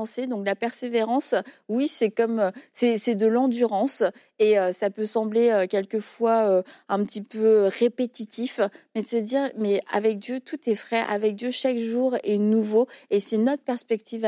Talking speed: 175 wpm